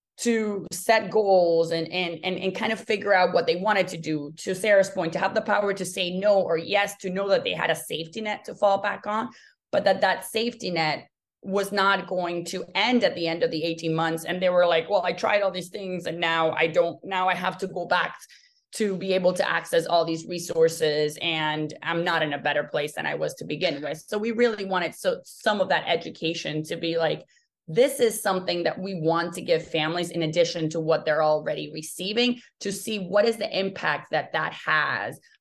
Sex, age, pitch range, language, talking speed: female, 20-39, 165-200 Hz, English, 230 wpm